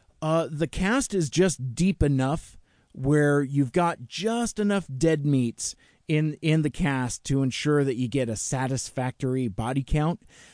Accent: American